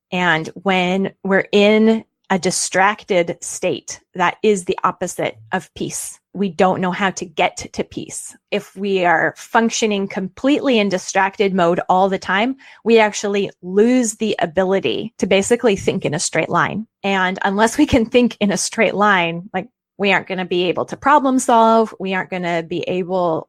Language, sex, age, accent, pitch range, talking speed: English, female, 30-49, American, 180-215 Hz, 170 wpm